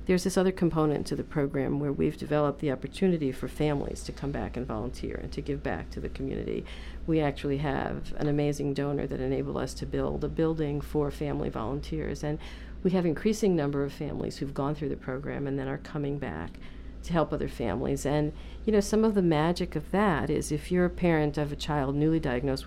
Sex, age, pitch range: female, 50-69, 135-160 Hz